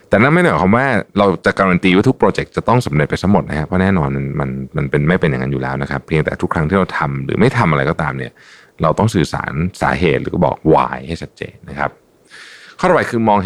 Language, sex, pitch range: Thai, male, 70-95 Hz